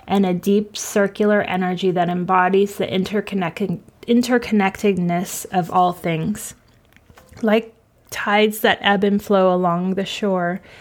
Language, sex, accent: English, female, American